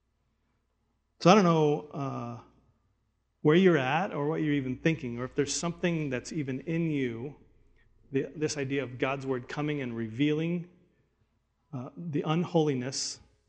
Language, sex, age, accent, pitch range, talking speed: English, male, 40-59, American, 130-165 Hz, 145 wpm